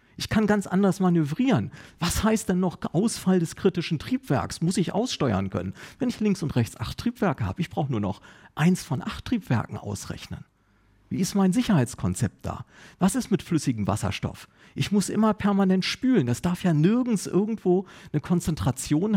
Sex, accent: male, German